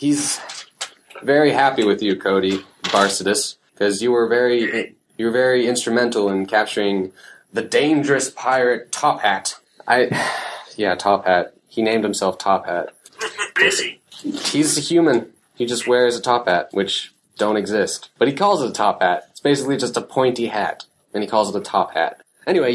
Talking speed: 170 wpm